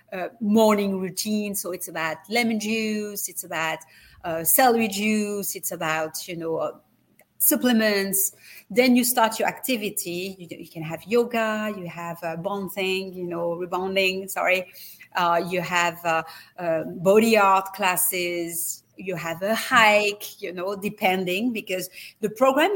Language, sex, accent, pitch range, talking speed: English, female, French, 180-225 Hz, 150 wpm